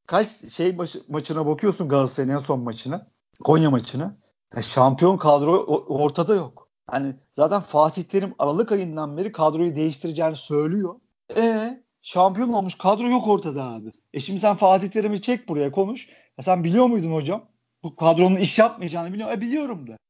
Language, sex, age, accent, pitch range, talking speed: Turkish, male, 50-69, native, 150-205 Hz, 160 wpm